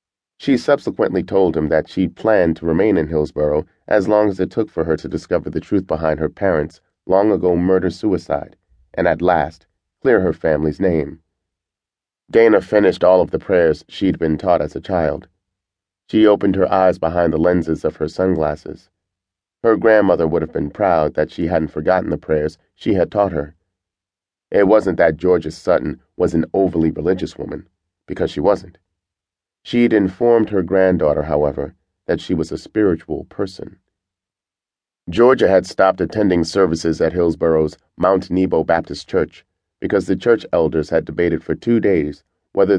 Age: 40-59